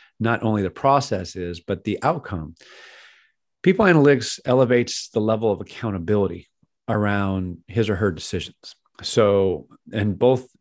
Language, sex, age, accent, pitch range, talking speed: English, male, 40-59, American, 95-115 Hz, 130 wpm